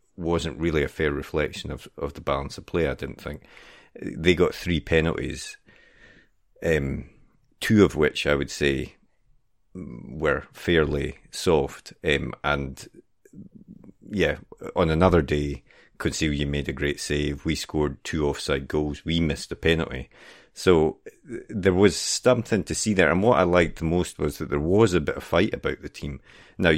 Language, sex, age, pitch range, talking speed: English, male, 40-59, 70-85 Hz, 165 wpm